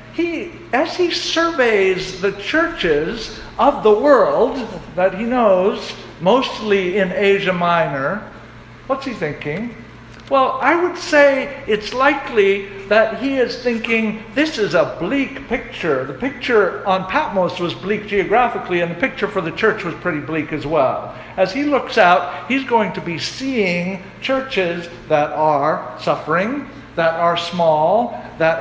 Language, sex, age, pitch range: English, male, 60-79, 170-225 Hz